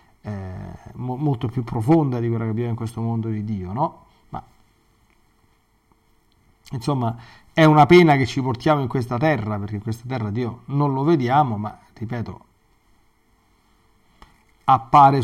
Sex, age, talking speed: male, 40-59, 140 wpm